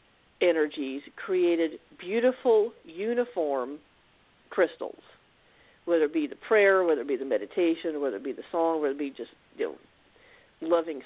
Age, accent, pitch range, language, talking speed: 50-69, American, 165-240 Hz, English, 145 wpm